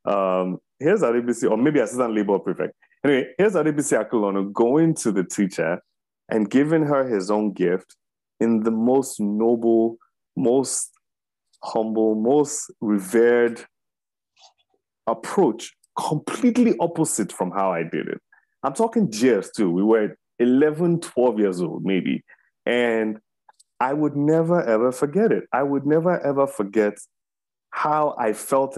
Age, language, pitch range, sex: 30-49, English, 105-150 Hz, male